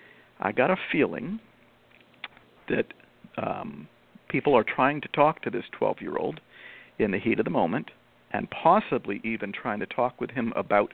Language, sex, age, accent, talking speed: English, male, 50-69, American, 160 wpm